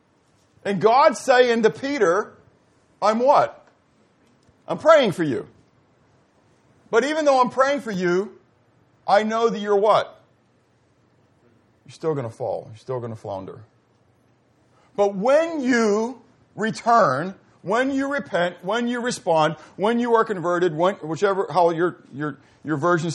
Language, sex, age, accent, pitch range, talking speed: English, male, 50-69, American, 130-215 Hz, 135 wpm